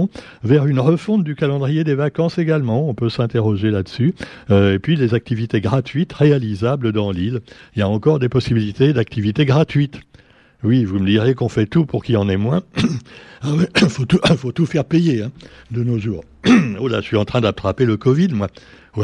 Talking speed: 200 wpm